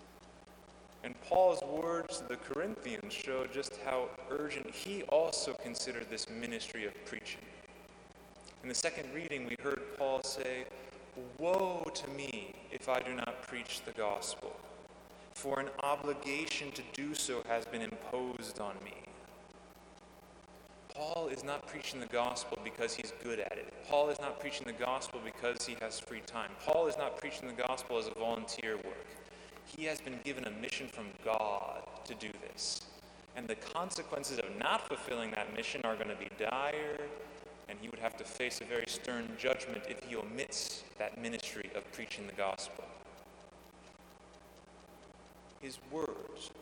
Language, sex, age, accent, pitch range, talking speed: English, male, 20-39, American, 120-160 Hz, 160 wpm